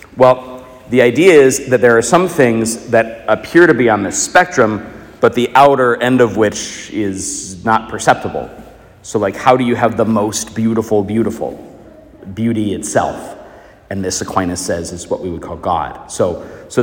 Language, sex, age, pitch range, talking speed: English, male, 40-59, 105-125 Hz, 175 wpm